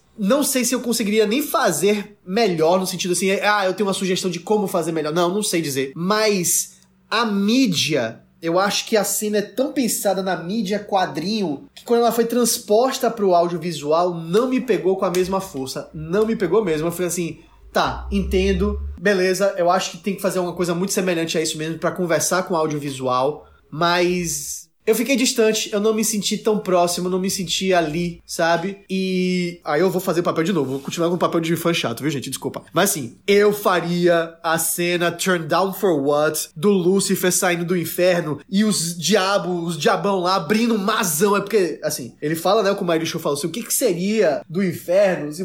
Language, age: Portuguese, 20-39